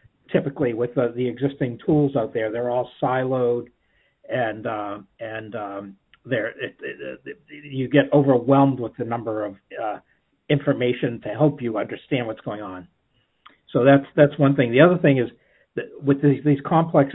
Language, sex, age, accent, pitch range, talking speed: English, male, 60-79, American, 125-155 Hz, 160 wpm